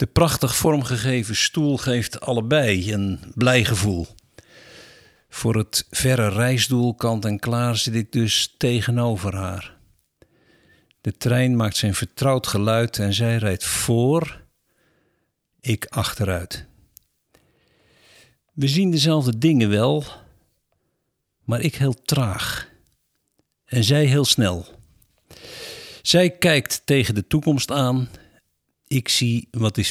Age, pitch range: 50-69, 105-130 Hz